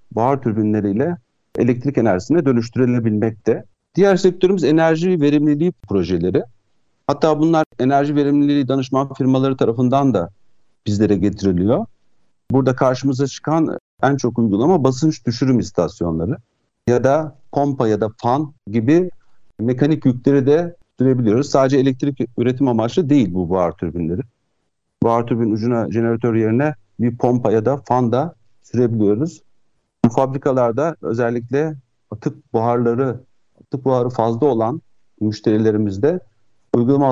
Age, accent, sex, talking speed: 60-79, native, male, 115 wpm